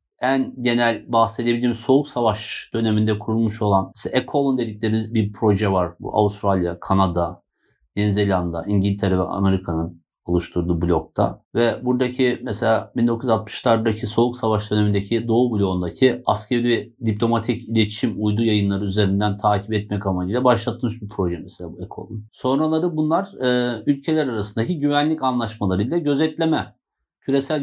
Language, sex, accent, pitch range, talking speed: Turkish, male, native, 100-125 Hz, 120 wpm